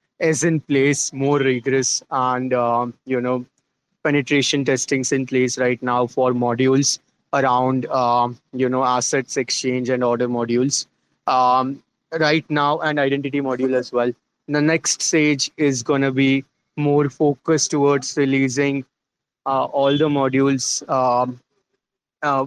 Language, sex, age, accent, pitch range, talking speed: English, male, 20-39, Indian, 130-145 Hz, 130 wpm